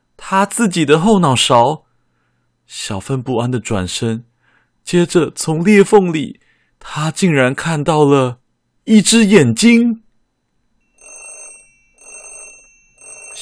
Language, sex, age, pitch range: Chinese, male, 20-39, 105-150 Hz